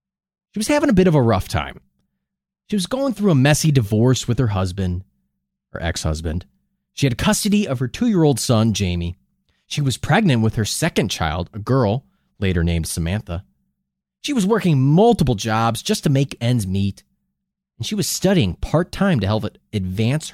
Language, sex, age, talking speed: English, male, 30-49, 175 wpm